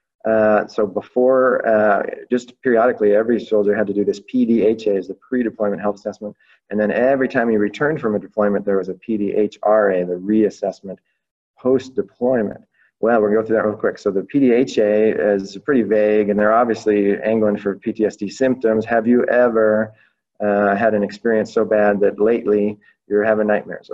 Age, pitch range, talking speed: 30-49, 105-115 Hz, 170 wpm